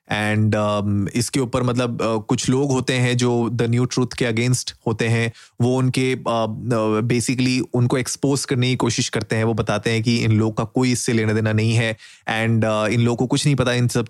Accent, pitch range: native, 115-140 Hz